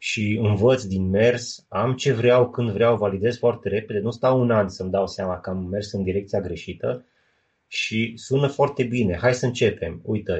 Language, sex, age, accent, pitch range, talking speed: Romanian, male, 20-39, native, 100-120 Hz, 190 wpm